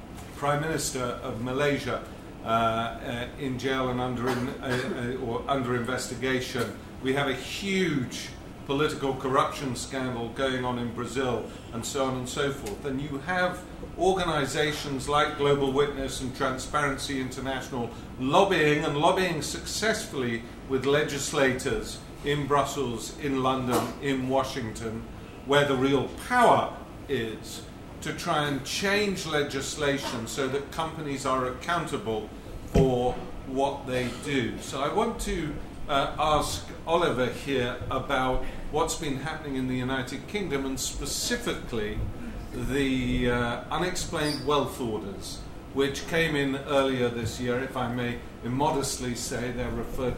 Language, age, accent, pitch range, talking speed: English, 50-69, British, 125-145 Hz, 135 wpm